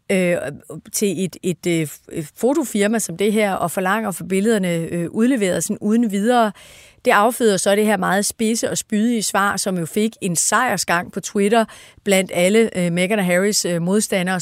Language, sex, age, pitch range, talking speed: Danish, female, 30-49, 185-230 Hz, 180 wpm